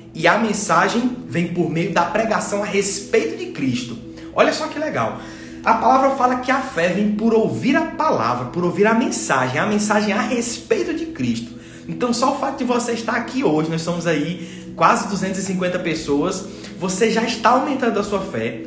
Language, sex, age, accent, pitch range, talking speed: Portuguese, male, 20-39, Brazilian, 145-215 Hz, 190 wpm